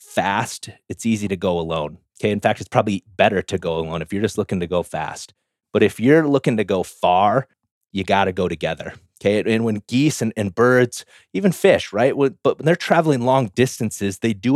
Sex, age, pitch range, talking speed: male, 30-49, 100-135 Hz, 215 wpm